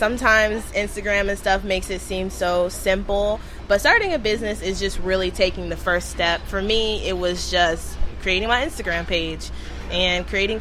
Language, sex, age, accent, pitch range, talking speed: English, female, 20-39, American, 175-200 Hz, 175 wpm